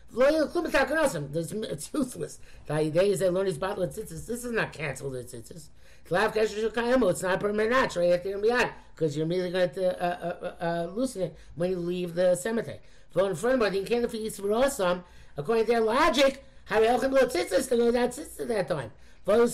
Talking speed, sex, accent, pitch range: 140 wpm, male, American, 160-235 Hz